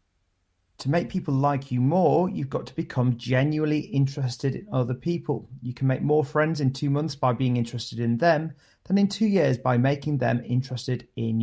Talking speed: 195 wpm